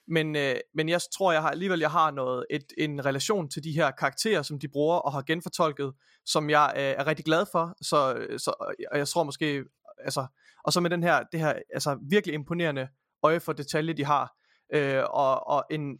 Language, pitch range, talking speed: Danish, 140-165 Hz, 215 wpm